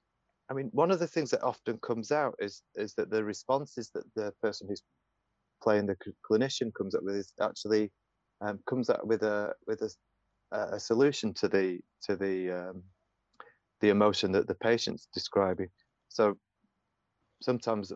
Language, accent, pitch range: English, British, 100-120 Hz